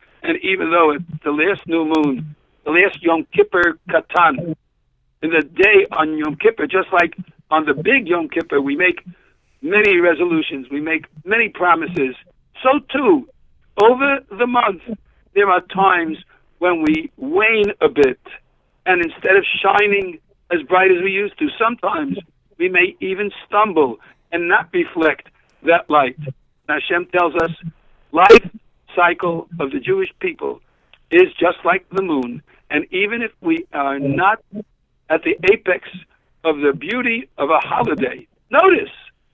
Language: English